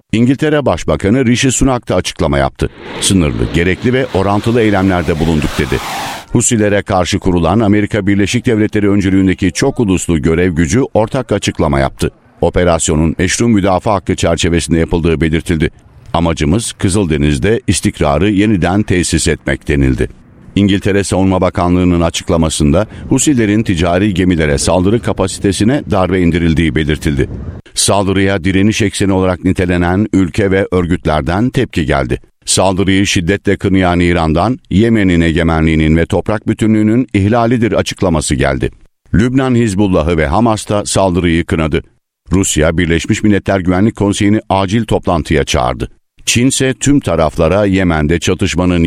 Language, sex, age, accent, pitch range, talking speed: Turkish, male, 60-79, native, 85-105 Hz, 120 wpm